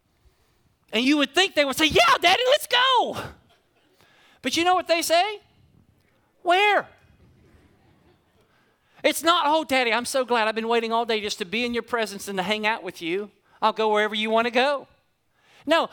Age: 40-59